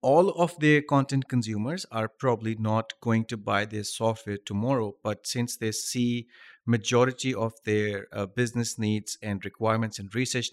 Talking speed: 160 wpm